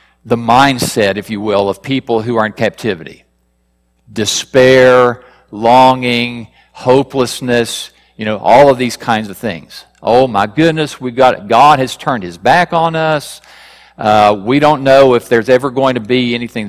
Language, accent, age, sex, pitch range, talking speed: English, American, 50-69, male, 120-175 Hz, 160 wpm